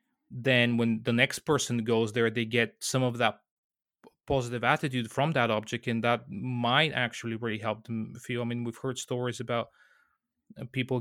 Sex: male